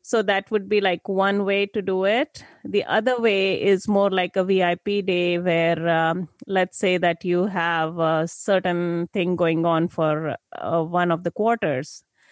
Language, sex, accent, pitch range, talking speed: English, female, Indian, 170-205 Hz, 180 wpm